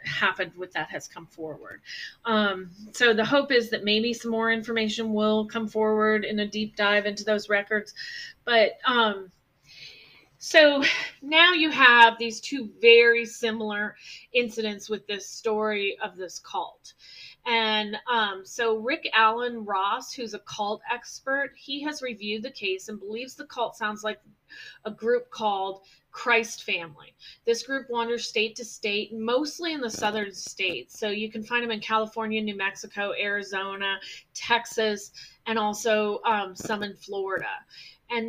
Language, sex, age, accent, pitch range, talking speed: English, female, 30-49, American, 205-235 Hz, 155 wpm